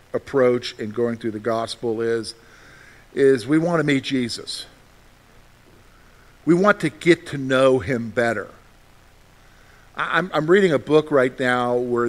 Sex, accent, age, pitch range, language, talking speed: male, American, 50-69, 120-155 Hz, English, 145 wpm